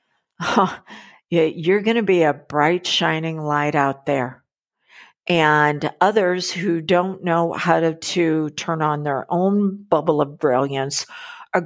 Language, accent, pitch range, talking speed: English, American, 150-190 Hz, 135 wpm